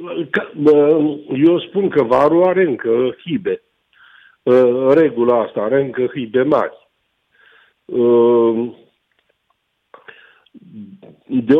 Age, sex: 50-69, male